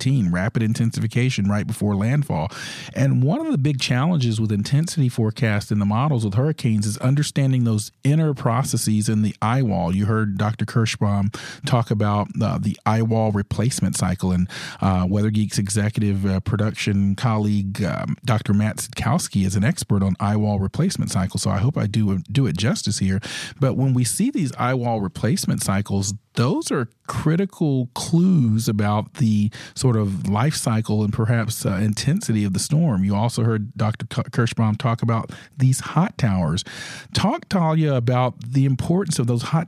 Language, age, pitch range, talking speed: English, 40-59, 105-145 Hz, 165 wpm